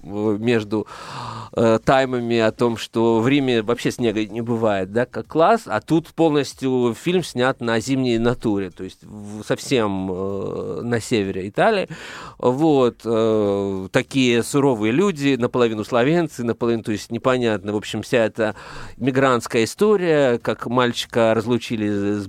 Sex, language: male, Russian